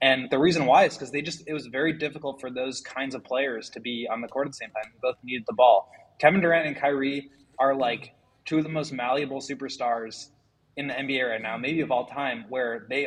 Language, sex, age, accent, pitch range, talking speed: English, male, 20-39, American, 120-140 Hz, 240 wpm